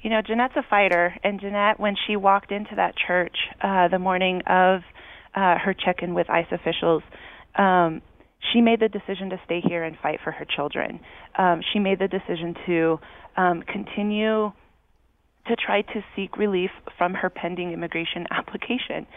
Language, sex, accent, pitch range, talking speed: English, female, American, 180-215 Hz, 170 wpm